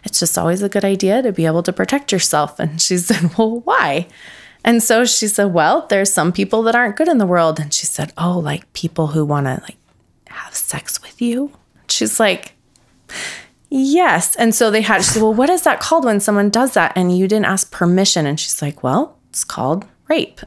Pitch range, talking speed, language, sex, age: 170-230 Hz, 220 wpm, English, female, 20-39